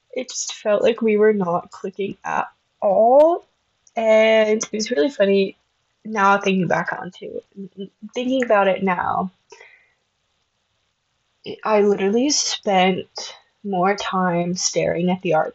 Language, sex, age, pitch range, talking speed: English, female, 20-39, 195-285 Hz, 125 wpm